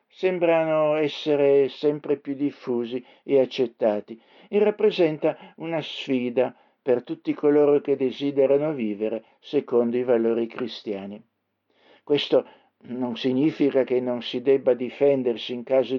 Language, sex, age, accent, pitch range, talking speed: Italian, male, 60-79, native, 120-145 Hz, 115 wpm